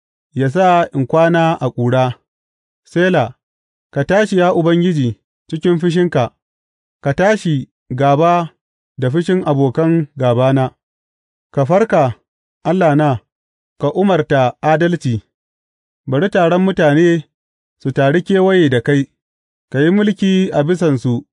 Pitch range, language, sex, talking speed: 120-175 Hz, English, male, 75 wpm